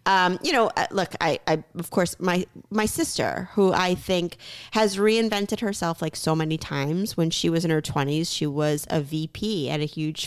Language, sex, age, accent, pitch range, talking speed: English, female, 30-49, American, 160-205 Hz, 200 wpm